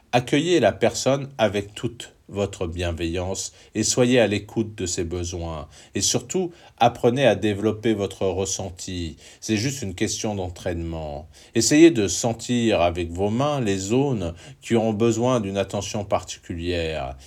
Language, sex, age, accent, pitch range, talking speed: French, male, 50-69, French, 90-120 Hz, 140 wpm